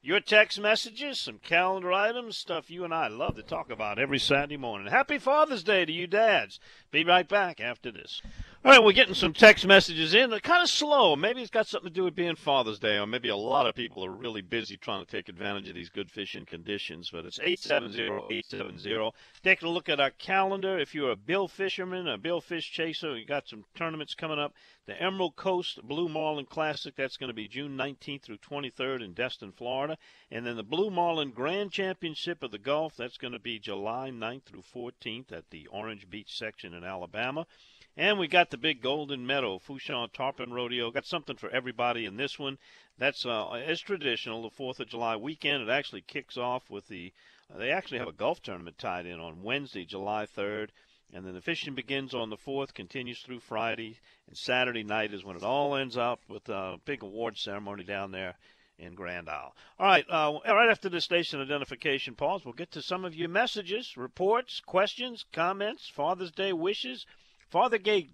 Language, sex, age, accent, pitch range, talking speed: English, male, 50-69, American, 115-185 Hz, 205 wpm